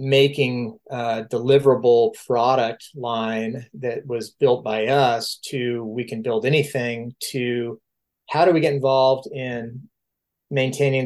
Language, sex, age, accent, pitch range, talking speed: English, male, 30-49, American, 115-140 Hz, 125 wpm